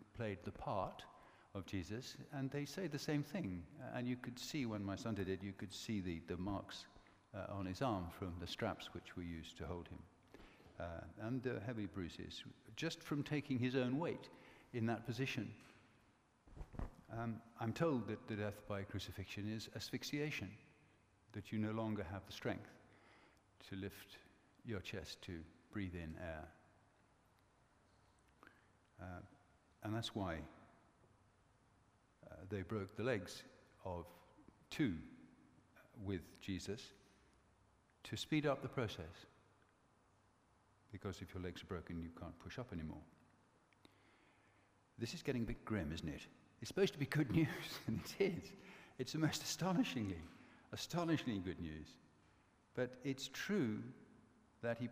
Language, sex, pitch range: English, male, 95-125 Hz